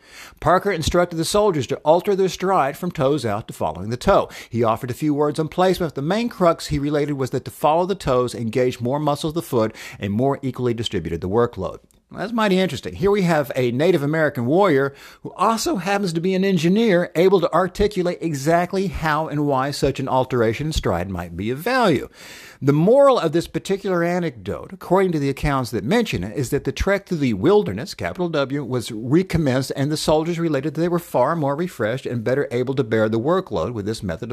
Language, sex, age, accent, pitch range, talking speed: English, male, 50-69, American, 125-180 Hz, 215 wpm